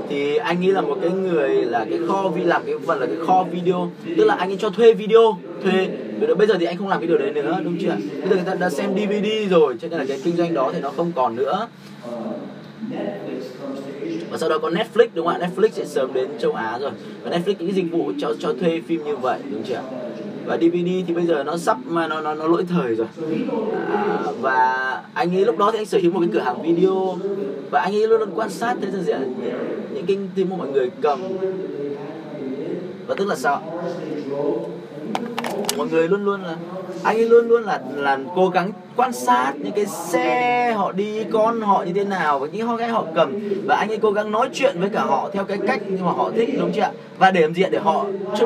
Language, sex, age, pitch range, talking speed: Vietnamese, male, 20-39, 170-215 Hz, 240 wpm